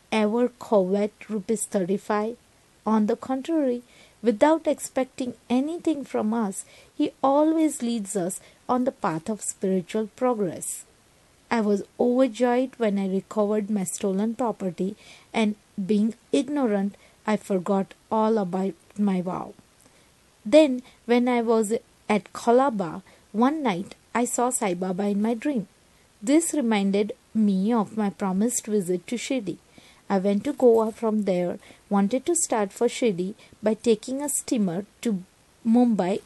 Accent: Indian